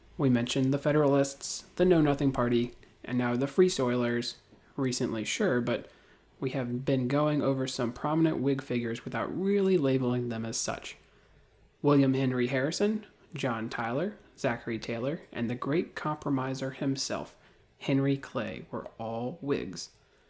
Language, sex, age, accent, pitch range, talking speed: English, male, 30-49, American, 120-140 Hz, 140 wpm